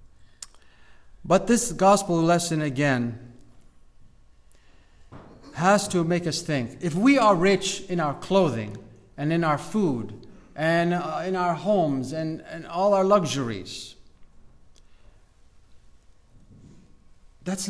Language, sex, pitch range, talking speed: English, male, 120-175 Hz, 110 wpm